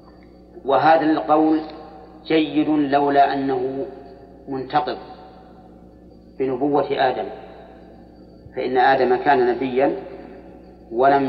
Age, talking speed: 40-59, 70 wpm